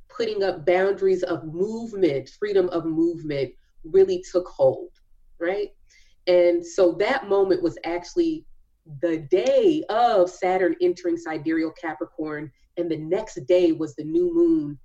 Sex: female